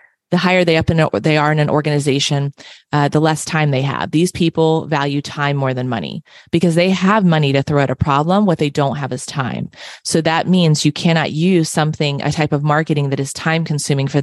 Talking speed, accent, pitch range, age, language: 230 wpm, American, 140-165 Hz, 30-49, English